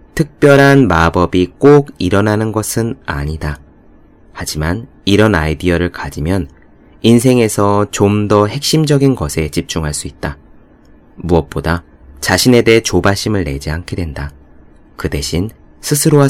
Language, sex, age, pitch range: Korean, male, 30-49, 80-110 Hz